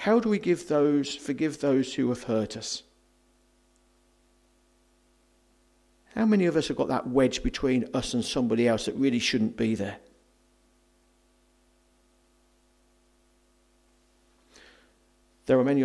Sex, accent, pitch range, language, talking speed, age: male, British, 100-140 Hz, English, 115 wpm, 50-69